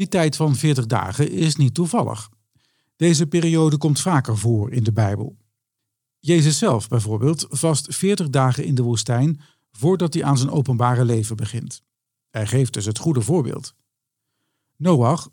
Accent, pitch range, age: Dutch, 120-155 Hz, 50-69